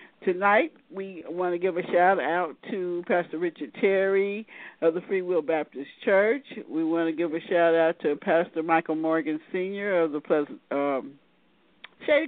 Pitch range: 160-200 Hz